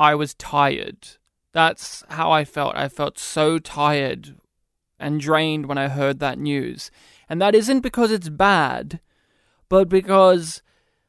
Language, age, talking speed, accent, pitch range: English, 20-39, 140 wpm, Australian, 160-205 Hz